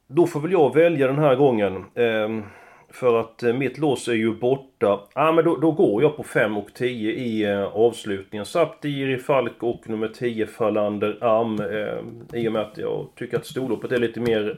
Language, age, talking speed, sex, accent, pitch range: Swedish, 30-49, 205 wpm, male, native, 110-140 Hz